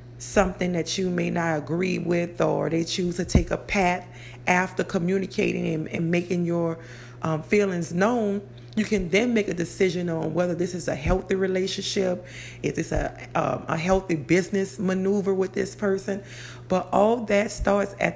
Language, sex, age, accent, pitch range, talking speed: English, female, 30-49, American, 160-190 Hz, 170 wpm